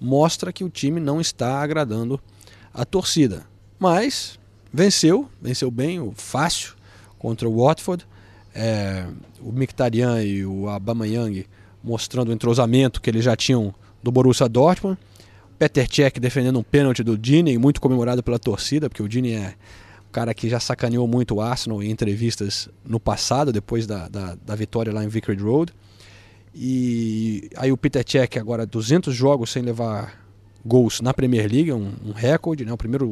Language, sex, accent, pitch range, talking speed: Portuguese, male, Brazilian, 105-145 Hz, 165 wpm